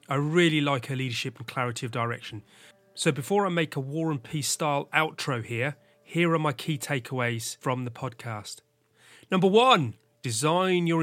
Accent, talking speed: British, 175 wpm